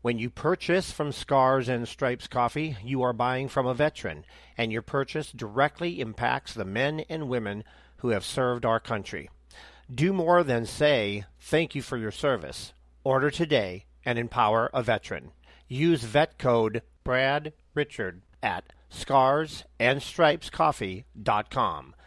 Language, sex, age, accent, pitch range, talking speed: English, male, 50-69, American, 110-130 Hz, 135 wpm